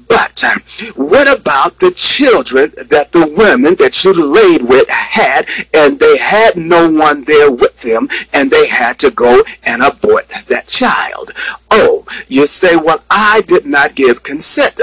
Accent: American